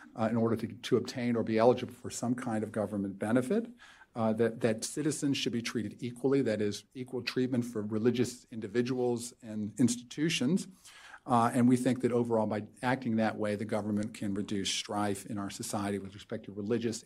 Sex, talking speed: male, 190 wpm